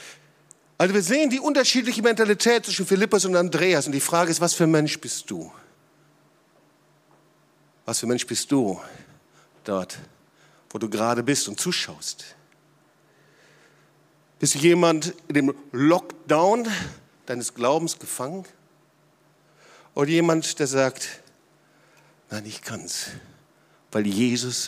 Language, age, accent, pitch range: German, 50-69, German, 155-215 Hz